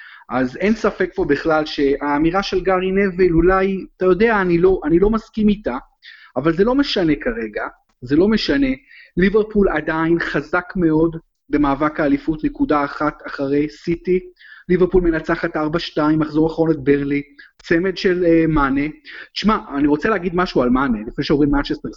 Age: 30-49